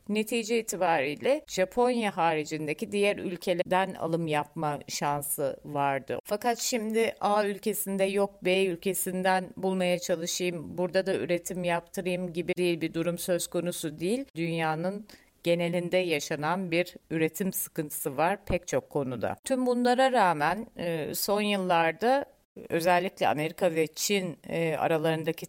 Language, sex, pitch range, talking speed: Turkish, female, 170-225 Hz, 120 wpm